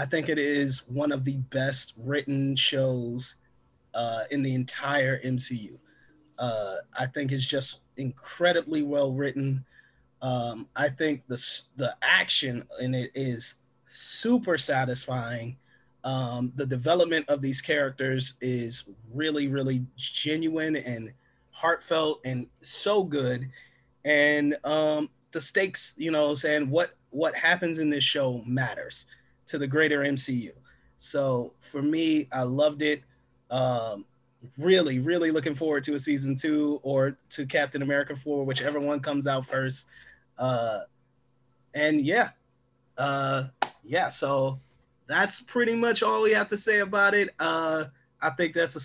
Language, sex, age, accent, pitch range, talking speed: English, male, 30-49, American, 130-155 Hz, 135 wpm